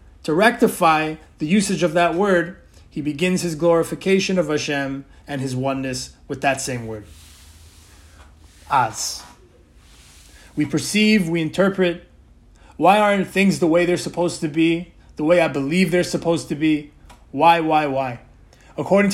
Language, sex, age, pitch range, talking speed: English, male, 30-49, 135-180 Hz, 145 wpm